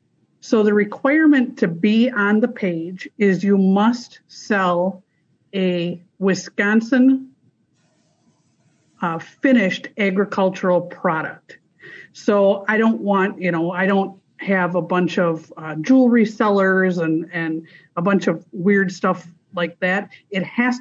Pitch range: 175-220 Hz